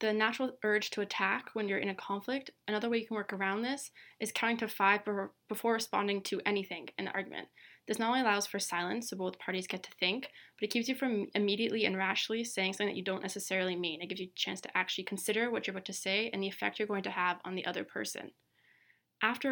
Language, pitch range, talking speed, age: English, 195-225 Hz, 245 wpm, 20-39